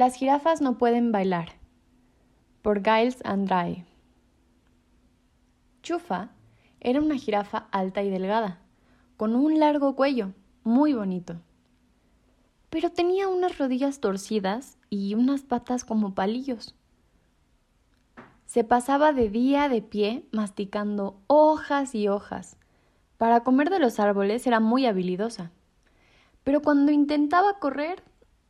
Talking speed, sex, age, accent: 110 wpm, female, 20-39, Mexican